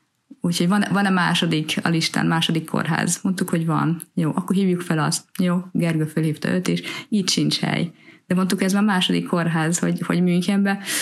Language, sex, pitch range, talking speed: Hungarian, female, 170-205 Hz, 175 wpm